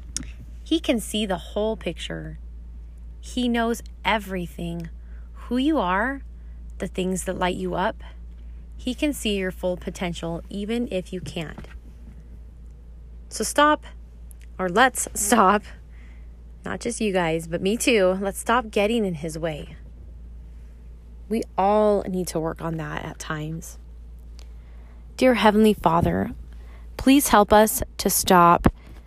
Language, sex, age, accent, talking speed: English, female, 20-39, American, 130 wpm